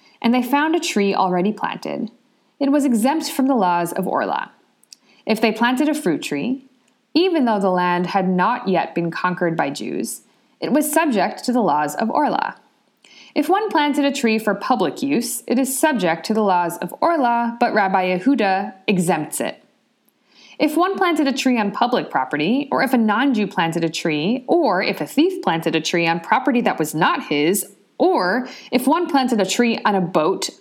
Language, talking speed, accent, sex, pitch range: English, 190 wpm, American, female, 190-280 Hz